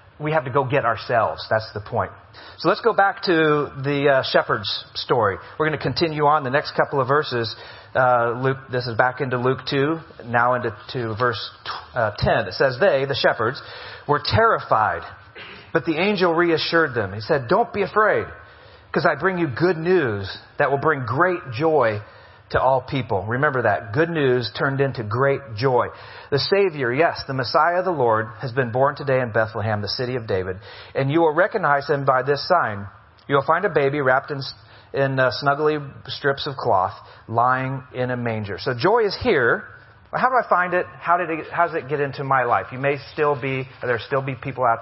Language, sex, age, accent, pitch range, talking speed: English, male, 40-59, American, 115-155 Hz, 200 wpm